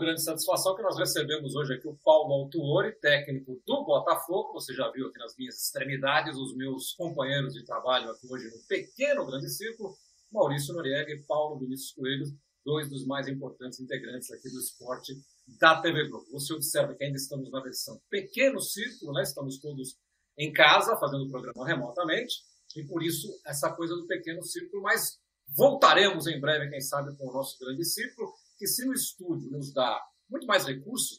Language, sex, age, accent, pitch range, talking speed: Portuguese, male, 40-59, Brazilian, 135-190 Hz, 185 wpm